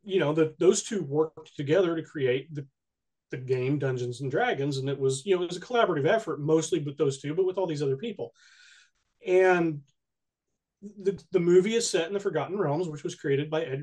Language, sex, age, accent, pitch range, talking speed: English, male, 30-49, American, 135-175 Hz, 215 wpm